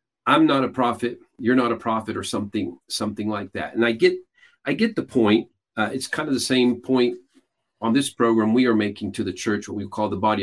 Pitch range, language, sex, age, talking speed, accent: 105-130 Hz, English, male, 40-59, 235 wpm, American